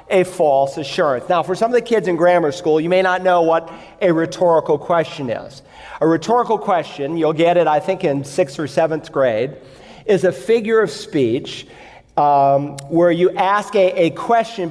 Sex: male